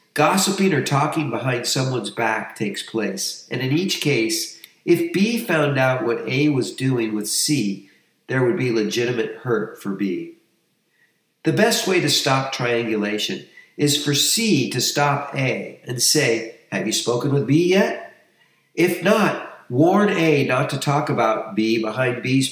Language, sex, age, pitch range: English, male, 50-69, 120-160 Hz